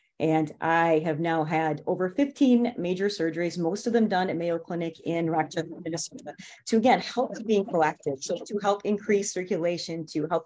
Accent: American